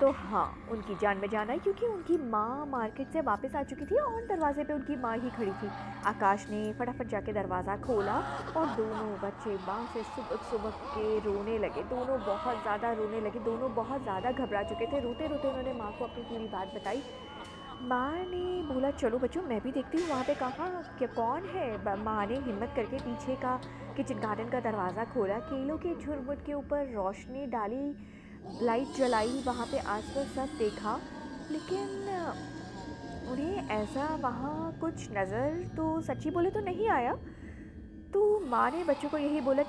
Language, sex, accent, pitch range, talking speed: Hindi, female, native, 215-285 Hz, 175 wpm